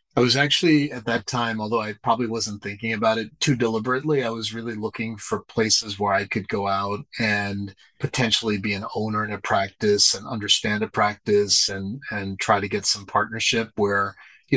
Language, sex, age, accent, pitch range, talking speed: English, male, 30-49, American, 100-115 Hz, 195 wpm